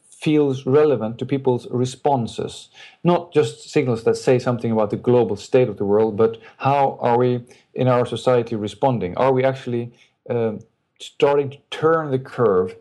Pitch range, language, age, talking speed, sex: 115-140 Hz, English, 50-69, 165 wpm, male